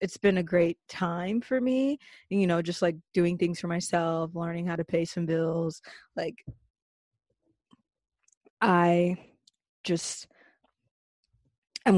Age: 20-39